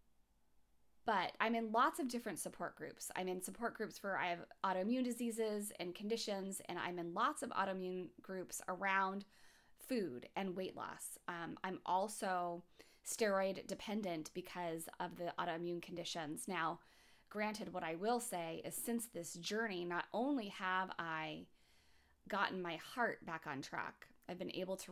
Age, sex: 20-39, female